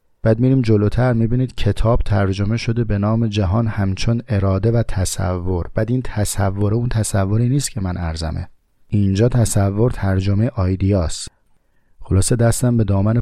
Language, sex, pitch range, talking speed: Persian, male, 95-115 Hz, 140 wpm